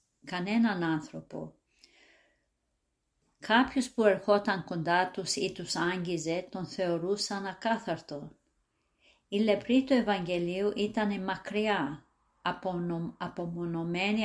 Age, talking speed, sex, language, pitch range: 50-69, 85 wpm, female, Greek, 175-210 Hz